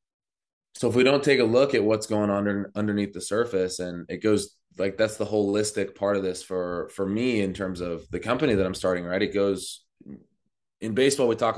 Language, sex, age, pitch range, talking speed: English, male, 20-39, 90-105 Hz, 225 wpm